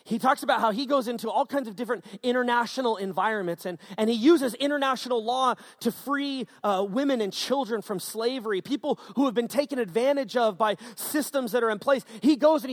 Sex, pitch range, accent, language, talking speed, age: male, 215-275 Hz, American, English, 205 wpm, 30-49